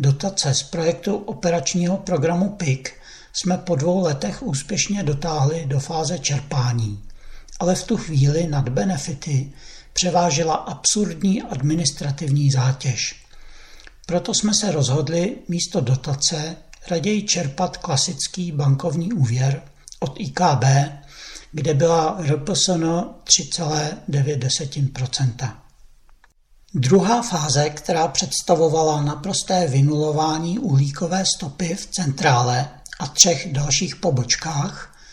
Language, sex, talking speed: Czech, male, 95 wpm